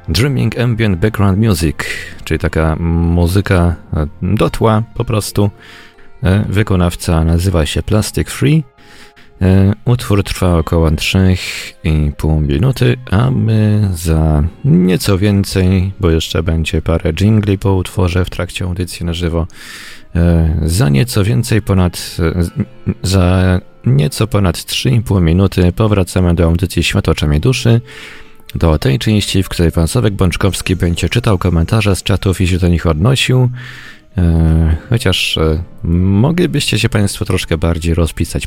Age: 30-49